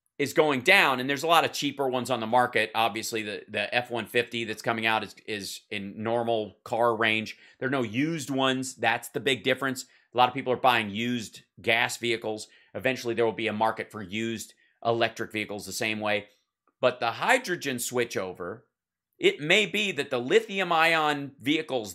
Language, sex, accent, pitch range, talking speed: English, male, American, 115-150 Hz, 185 wpm